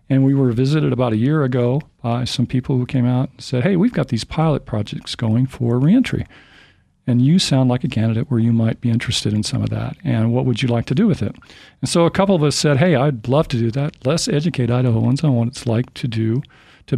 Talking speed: 255 wpm